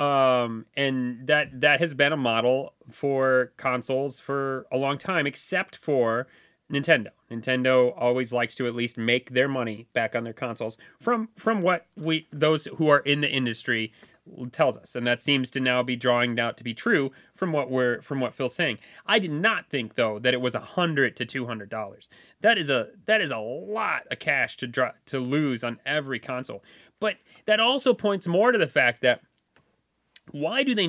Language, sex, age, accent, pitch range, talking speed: English, male, 30-49, American, 125-195 Hz, 200 wpm